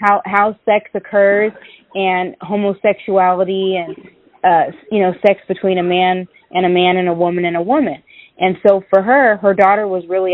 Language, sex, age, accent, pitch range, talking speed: English, female, 20-39, American, 180-200 Hz, 180 wpm